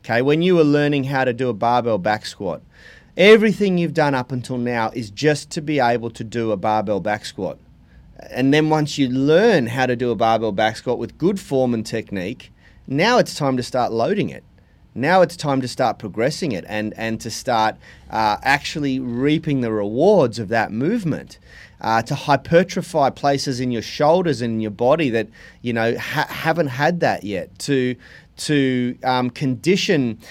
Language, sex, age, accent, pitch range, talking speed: English, male, 30-49, Australian, 115-145 Hz, 190 wpm